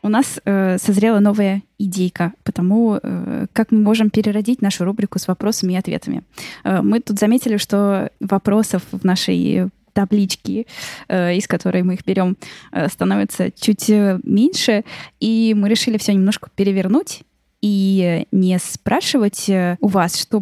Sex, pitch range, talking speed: female, 180-215 Hz, 130 wpm